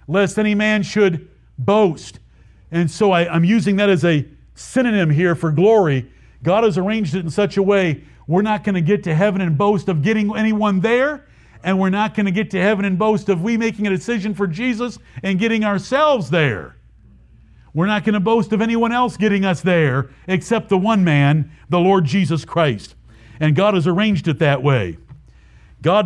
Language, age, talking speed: English, 50-69, 195 wpm